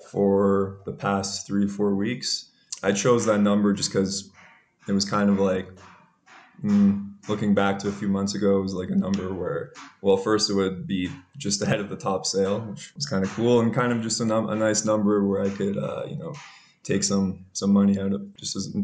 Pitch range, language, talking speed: 100-110 Hz, English, 225 wpm